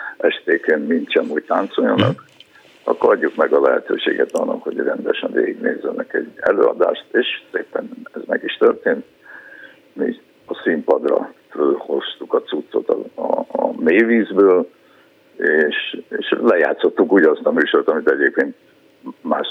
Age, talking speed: 60-79, 125 wpm